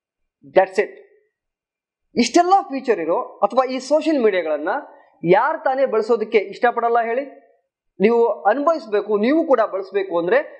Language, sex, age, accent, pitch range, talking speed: Kannada, male, 20-39, native, 200-300 Hz, 110 wpm